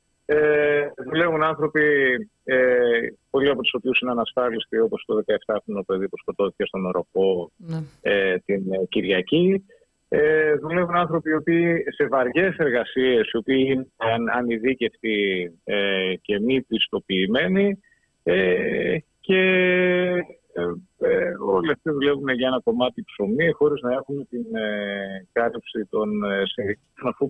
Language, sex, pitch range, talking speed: Greek, male, 110-160 Hz, 105 wpm